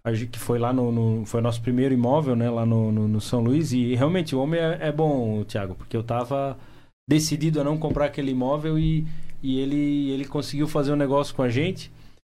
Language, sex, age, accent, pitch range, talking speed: Portuguese, male, 20-39, Brazilian, 120-145 Hz, 220 wpm